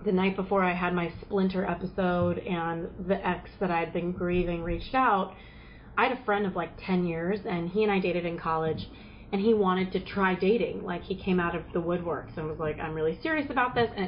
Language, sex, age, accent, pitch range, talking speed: English, female, 30-49, American, 170-200 Hz, 240 wpm